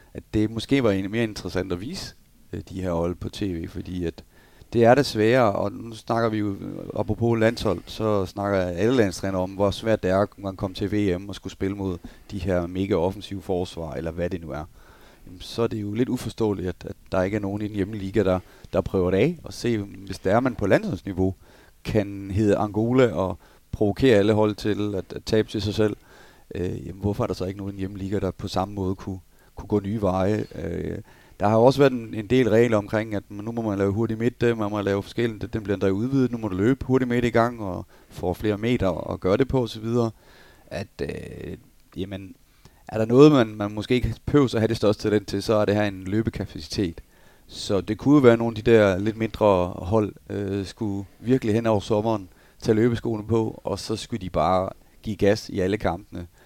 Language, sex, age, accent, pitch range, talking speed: Danish, male, 30-49, native, 95-115 Hz, 225 wpm